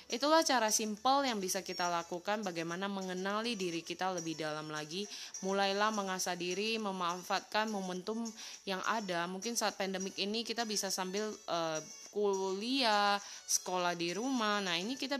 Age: 20-39